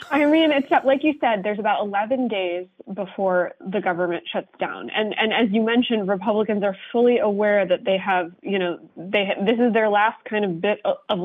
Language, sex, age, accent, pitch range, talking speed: English, female, 20-39, American, 185-220 Hz, 210 wpm